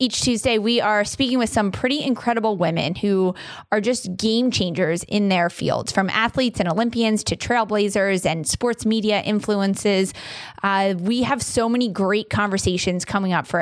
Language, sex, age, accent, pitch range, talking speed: English, female, 20-39, American, 195-230 Hz, 165 wpm